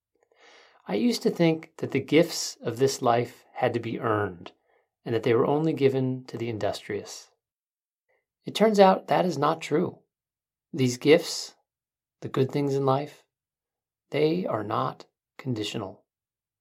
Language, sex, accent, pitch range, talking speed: English, male, American, 125-155 Hz, 150 wpm